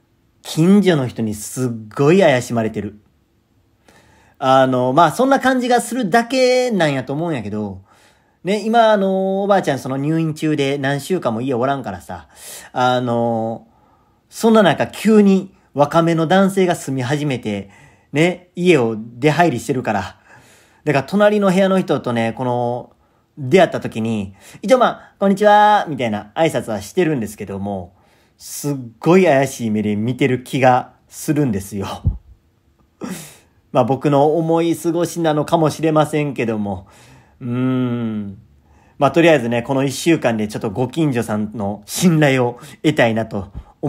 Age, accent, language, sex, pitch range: 40-59, native, Japanese, male, 115-165 Hz